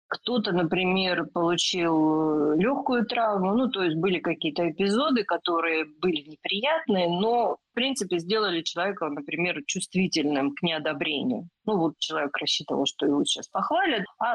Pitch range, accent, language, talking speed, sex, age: 160-190 Hz, native, Russian, 135 wpm, female, 30-49